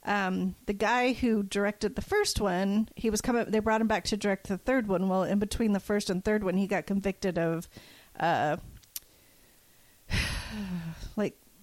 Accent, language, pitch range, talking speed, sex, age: American, English, 195-235 Hz, 175 wpm, female, 40-59